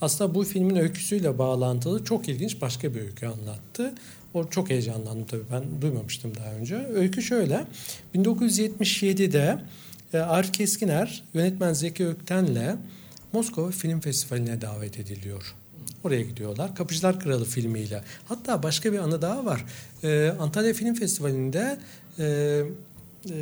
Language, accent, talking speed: Turkish, native, 120 wpm